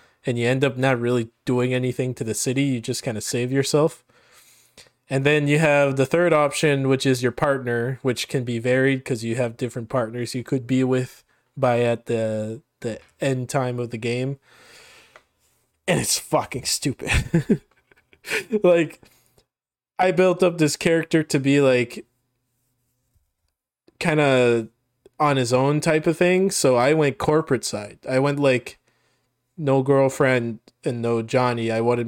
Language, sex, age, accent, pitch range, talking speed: English, male, 20-39, American, 120-145 Hz, 160 wpm